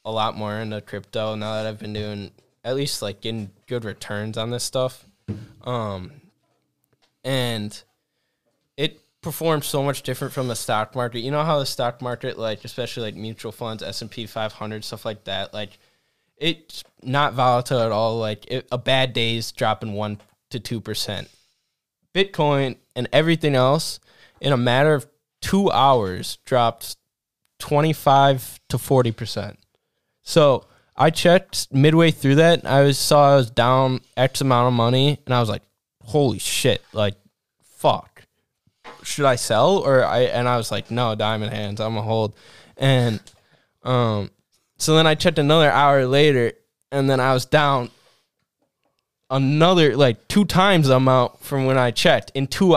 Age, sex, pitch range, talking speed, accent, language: 10-29, male, 110-140 Hz, 155 wpm, American, English